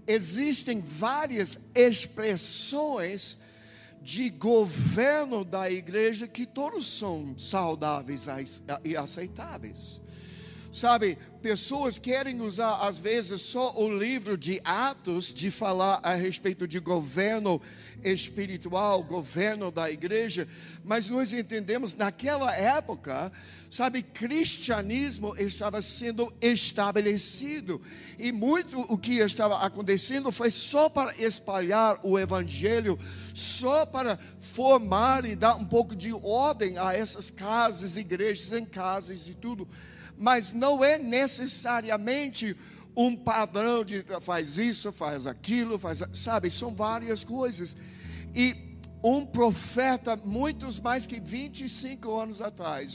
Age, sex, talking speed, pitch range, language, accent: 60-79, male, 110 wpm, 180-235 Hz, Portuguese, Brazilian